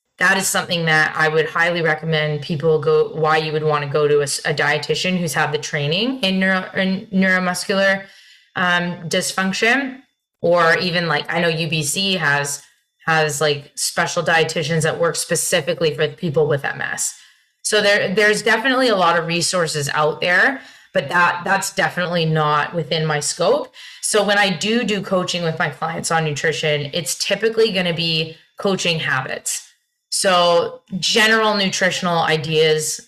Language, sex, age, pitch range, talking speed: English, female, 20-39, 155-185 Hz, 160 wpm